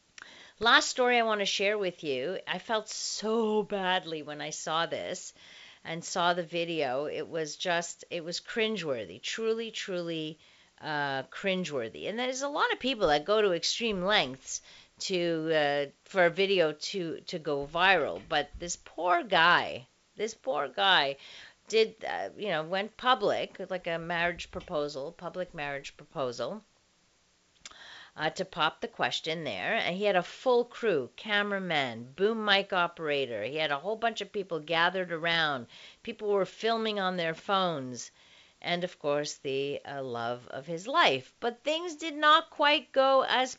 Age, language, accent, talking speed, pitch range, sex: 40-59, English, American, 160 wpm, 155-215 Hz, female